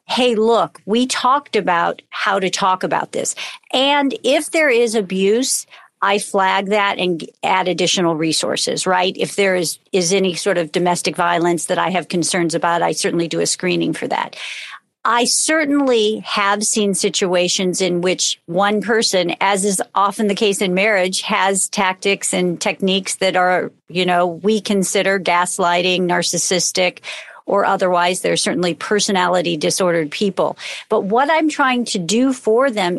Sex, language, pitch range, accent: female, English, 180-220 Hz, American